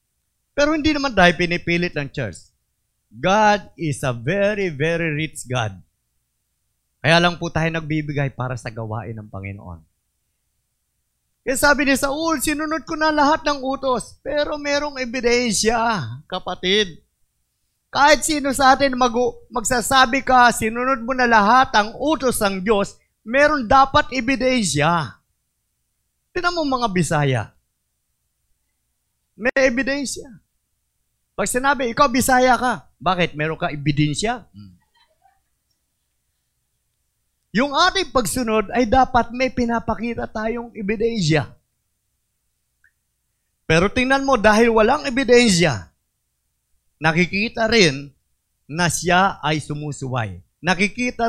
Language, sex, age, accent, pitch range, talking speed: Filipino, male, 20-39, native, 155-260 Hz, 110 wpm